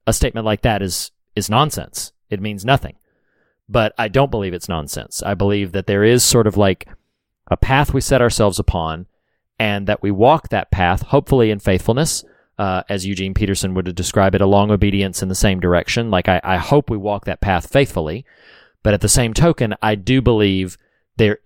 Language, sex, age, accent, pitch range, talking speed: English, male, 40-59, American, 95-120 Hz, 195 wpm